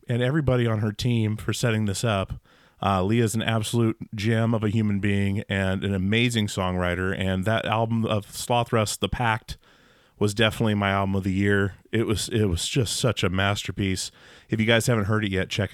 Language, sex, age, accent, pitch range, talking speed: English, male, 30-49, American, 95-115 Hz, 200 wpm